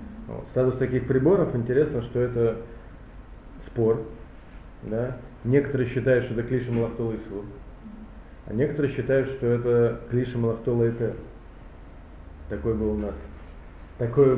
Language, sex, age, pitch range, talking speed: Russian, male, 20-39, 115-130 Hz, 110 wpm